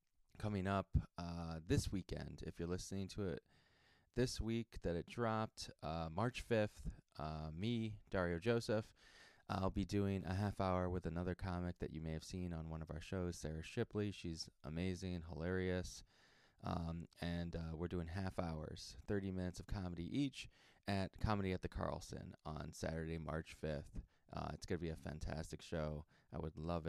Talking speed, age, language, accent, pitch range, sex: 175 wpm, 20-39, English, American, 85-105 Hz, male